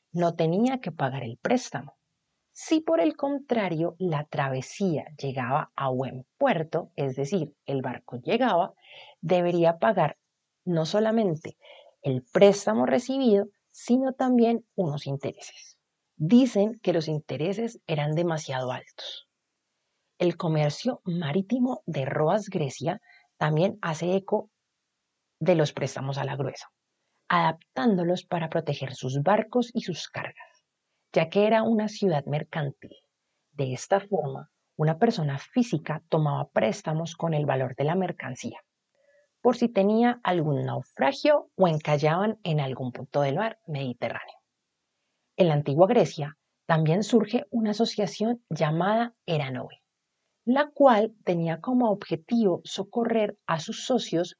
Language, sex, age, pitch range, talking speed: Spanish, female, 30-49, 150-220 Hz, 125 wpm